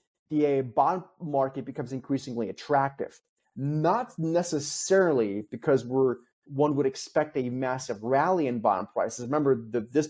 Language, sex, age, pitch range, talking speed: English, male, 30-49, 120-145 Hz, 130 wpm